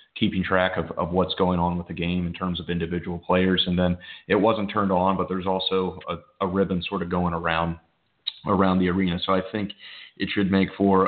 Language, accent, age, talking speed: English, American, 30-49, 220 wpm